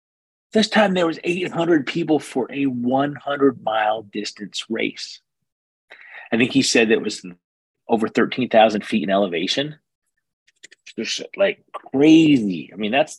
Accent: American